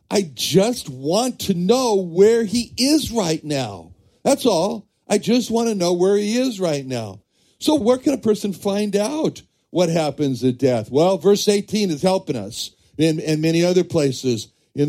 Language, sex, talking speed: English, male, 175 wpm